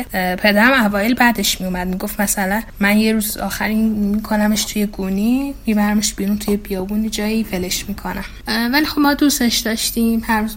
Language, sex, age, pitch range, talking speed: Persian, female, 10-29, 195-230 Hz, 155 wpm